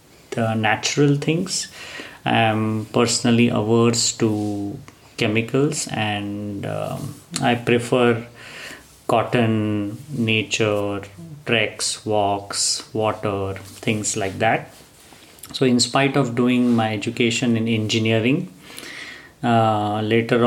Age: 30-49